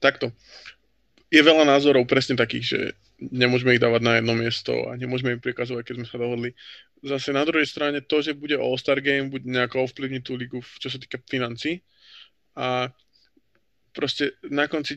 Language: Slovak